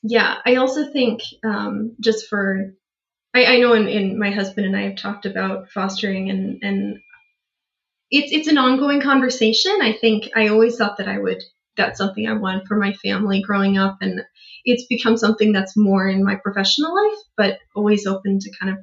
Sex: female